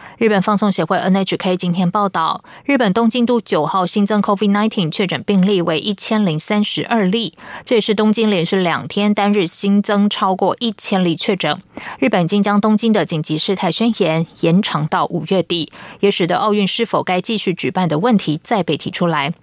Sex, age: female, 20-39